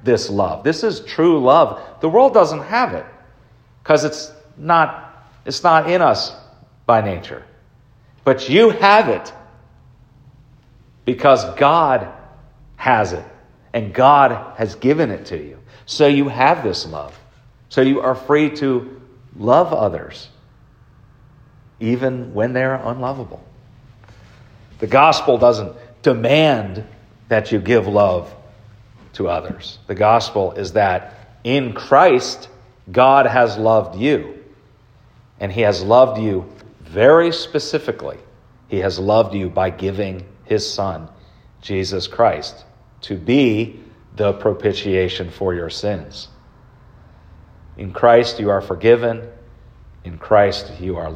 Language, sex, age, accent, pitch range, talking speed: English, male, 40-59, American, 100-130 Hz, 120 wpm